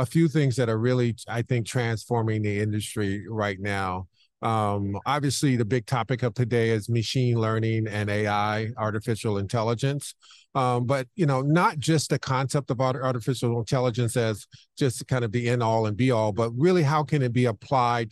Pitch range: 110-130 Hz